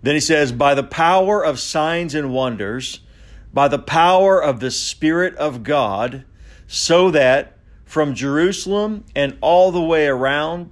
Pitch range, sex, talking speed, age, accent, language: 110-145 Hz, male, 150 wpm, 50-69, American, English